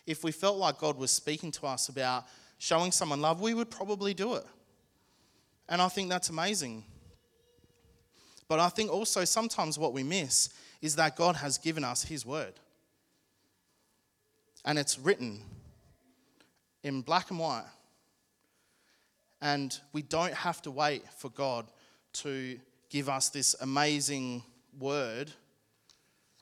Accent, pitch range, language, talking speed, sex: Australian, 135-170 Hz, English, 135 wpm, male